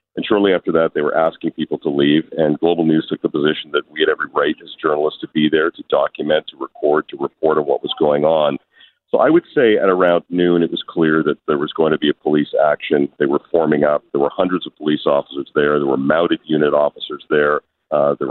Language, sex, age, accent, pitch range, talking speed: English, male, 40-59, American, 75-80 Hz, 245 wpm